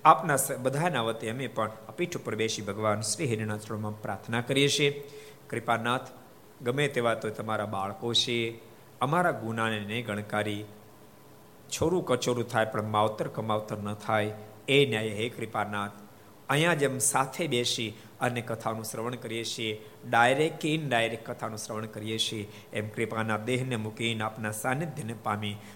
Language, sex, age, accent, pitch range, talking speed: Gujarati, male, 50-69, native, 105-130 Hz, 135 wpm